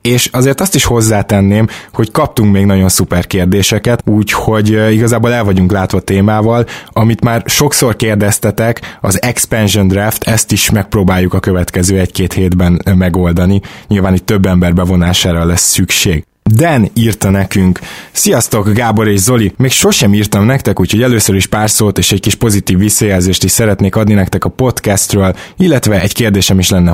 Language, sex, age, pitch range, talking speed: Hungarian, male, 20-39, 95-115 Hz, 160 wpm